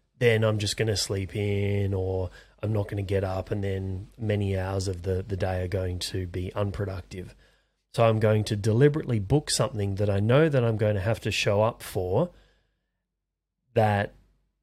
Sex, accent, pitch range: male, Australian, 100-120 Hz